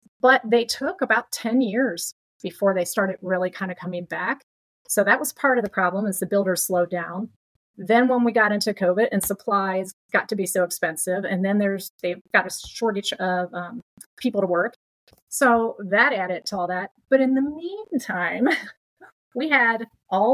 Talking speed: 190 wpm